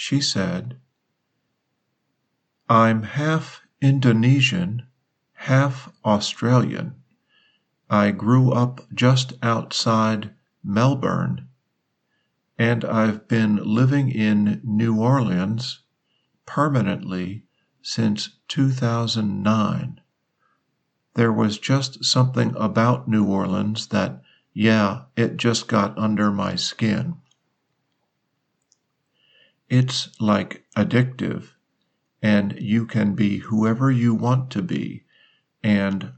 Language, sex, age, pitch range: Thai, male, 50-69, 105-130 Hz